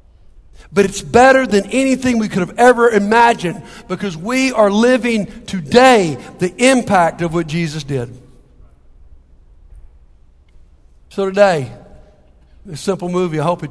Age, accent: 50-69, American